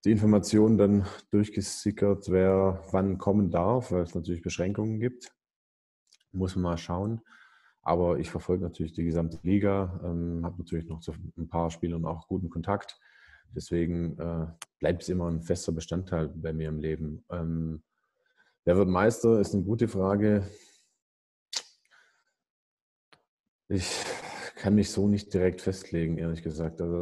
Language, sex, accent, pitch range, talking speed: German, male, German, 85-100 Hz, 145 wpm